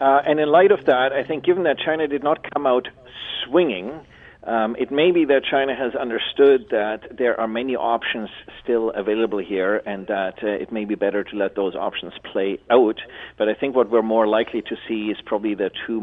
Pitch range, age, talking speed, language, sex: 95-115 Hz, 40-59, 215 wpm, English, male